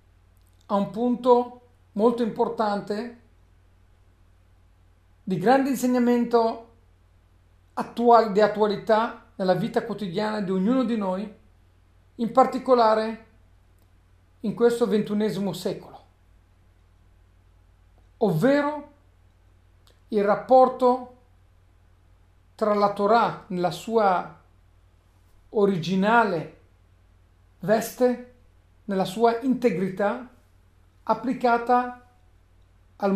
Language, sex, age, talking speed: Italian, male, 40-59, 70 wpm